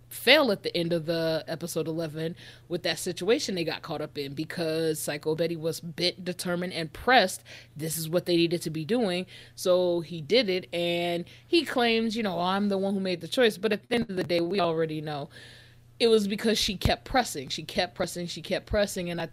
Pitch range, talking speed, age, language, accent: 165-200 Hz, 225 wpm, 20-39, English, American